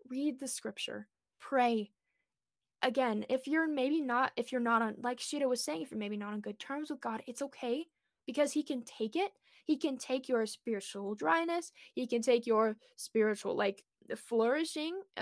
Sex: female